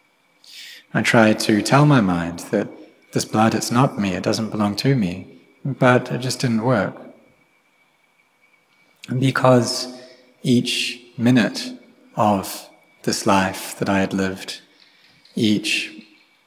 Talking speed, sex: 120 wpm, male